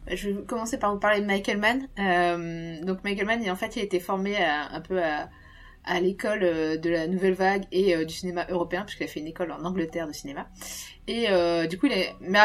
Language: French